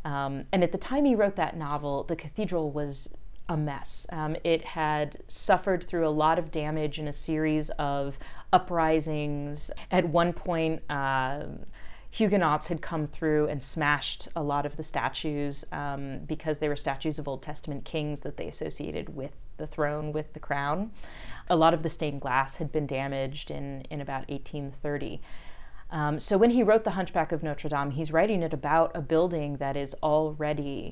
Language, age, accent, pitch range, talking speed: English, 30-49, American, 145-165 Hz, 180 wpm